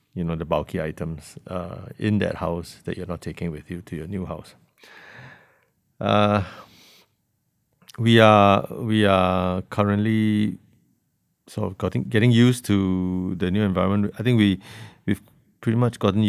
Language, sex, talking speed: English, male, 150 wpm